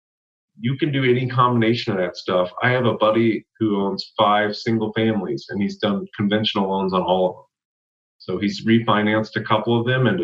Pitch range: 95-120 Hz